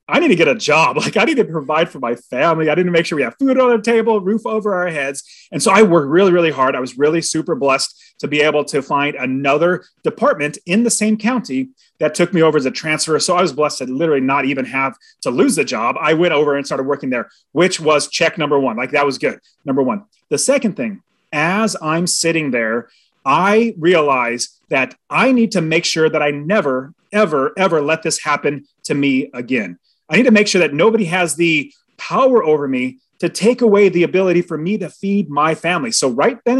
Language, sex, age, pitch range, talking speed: English, male, 30-49, 145-210 Hz, 235 wpm